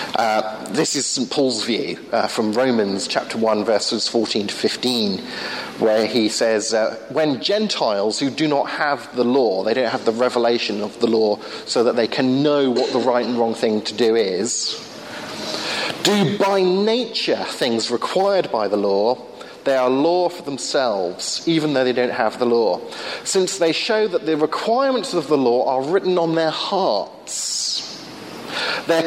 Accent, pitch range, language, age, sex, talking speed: British, 130-195 Hz, English, 40-59, male, 175 wpm